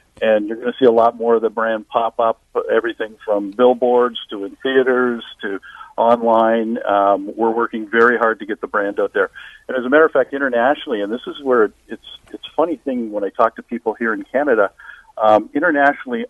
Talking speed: 210 wpm